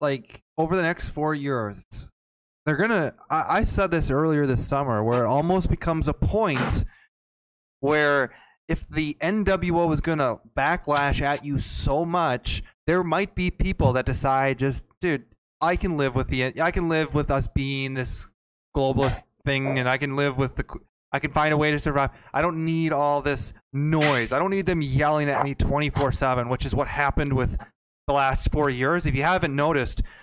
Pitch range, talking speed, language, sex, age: 130-155 Hz, 185 wpm, English, male, 20-39